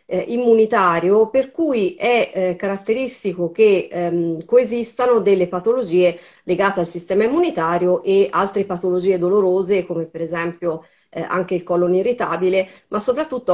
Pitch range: 175-205 Hz